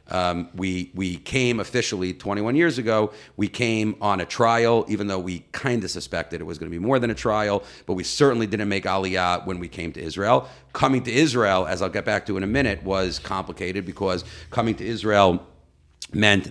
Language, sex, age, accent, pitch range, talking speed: English, male, 40-59, American, 90-110 Hz, 205 wpm